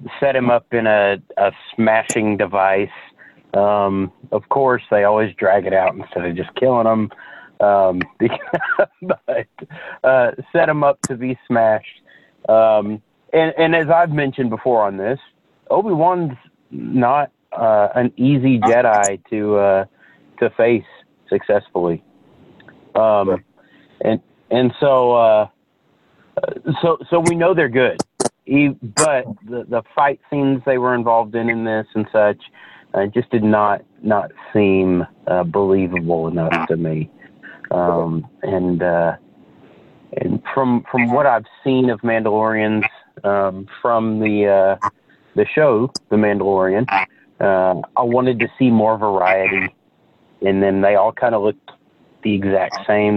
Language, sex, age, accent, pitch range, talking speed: English, male, 40-59, American, 95-125 Hz, 135 wpm